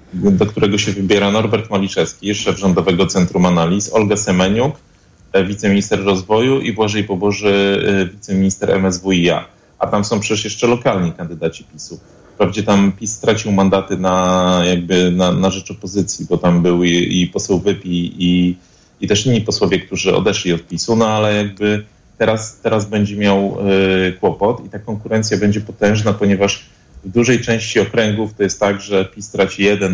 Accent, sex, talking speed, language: native, male, 160 wpm, Polish